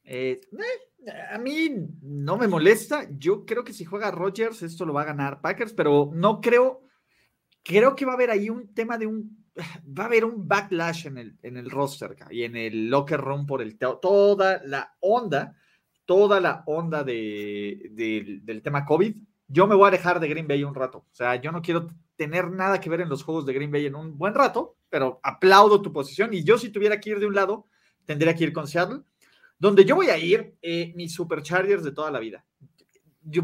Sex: male